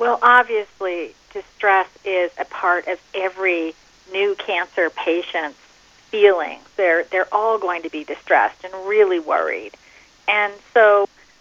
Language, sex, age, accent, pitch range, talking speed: English, female, 40-59, American, 180-235 Hz, 125 wpm